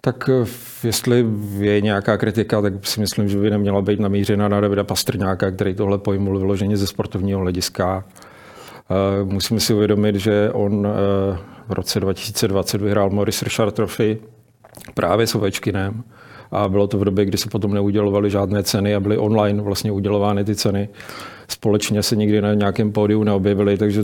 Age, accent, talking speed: 40-59, native, 165 wpm